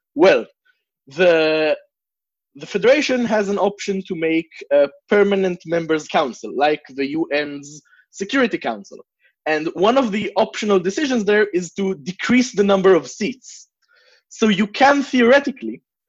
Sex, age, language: male, 20-39, English